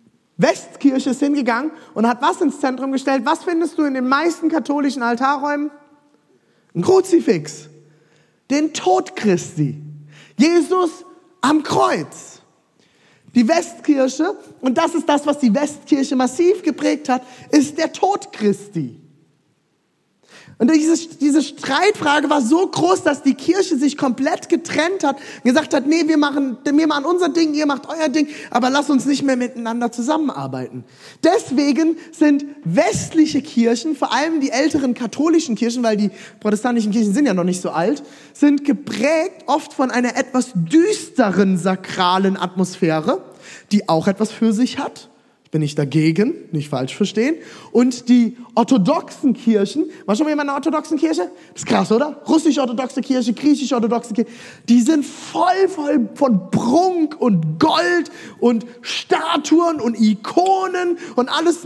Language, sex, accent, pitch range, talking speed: German, male, German, 230-315 Hz, 145 wpm